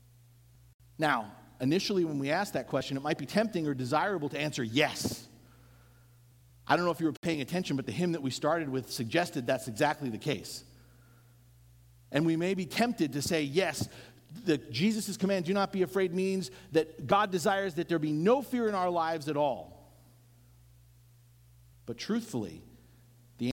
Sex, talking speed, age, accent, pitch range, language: male, 175 wpm, 50-69, American, 120-180 Hz, English